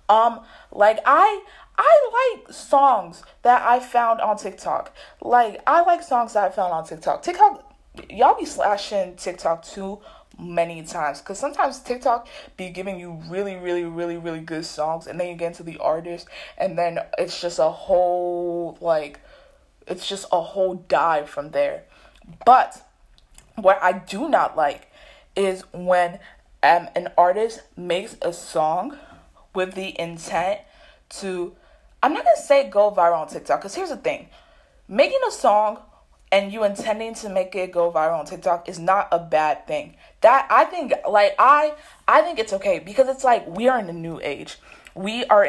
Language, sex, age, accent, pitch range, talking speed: English, female, 20-39, American, 175-240 Hz, 170 wpm